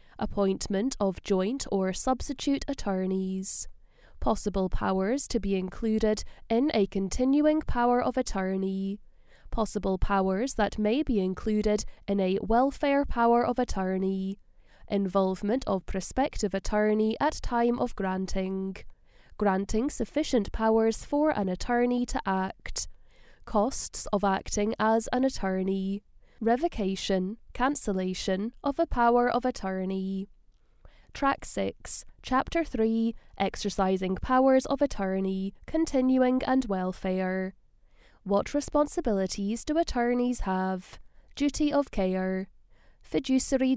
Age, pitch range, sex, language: 10-29, 190-255 Hz, female, English